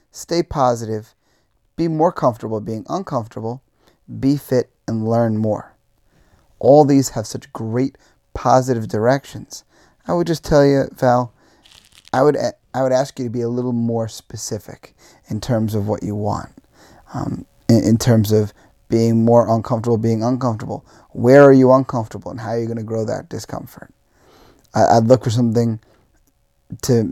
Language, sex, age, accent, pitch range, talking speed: English, male, 30-49, American, 110-130 Hz, 160 wpm